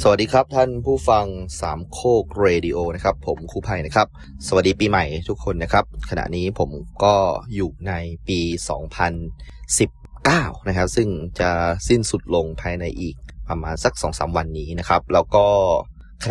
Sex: male